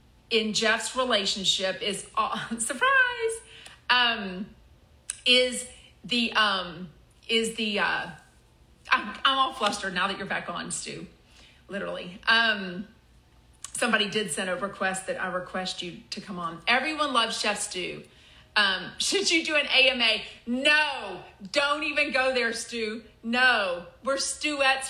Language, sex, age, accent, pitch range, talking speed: English, female, 30-49, American, 215-275 Hz, 135 wpm